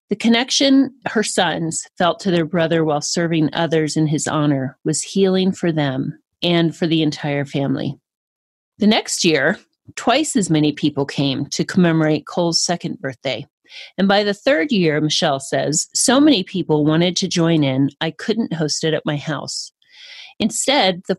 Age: 40-59